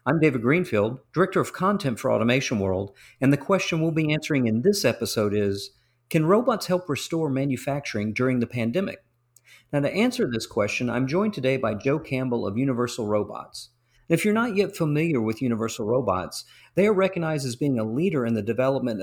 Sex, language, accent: male, English, American